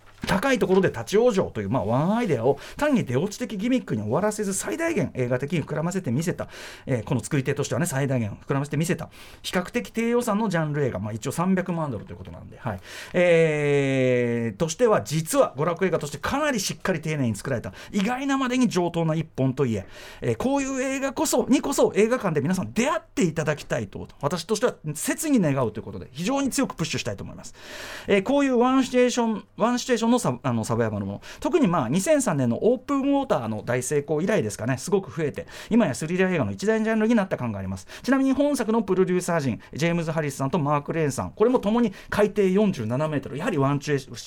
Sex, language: male, Japanese